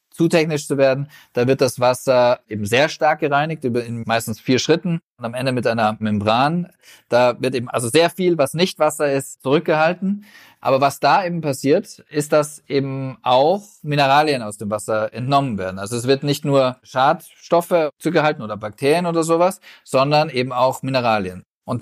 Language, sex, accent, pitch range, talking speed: German, male, German, 125-155 Hz, 180 wpm